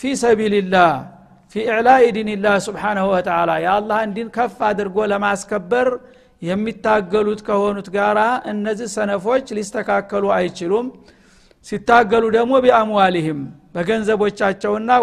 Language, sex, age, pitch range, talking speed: Amharic, male, 50-69, 200-230 Hz, 110 wpm